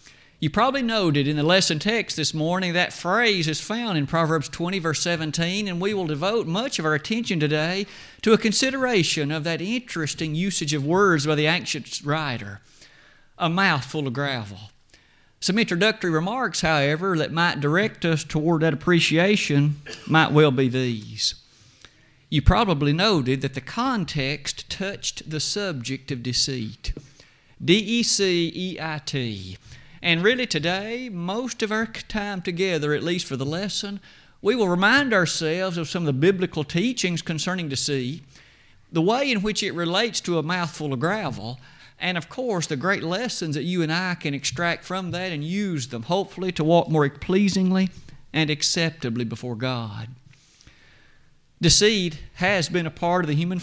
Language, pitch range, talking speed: English, 145-190 Hz, 160 wpm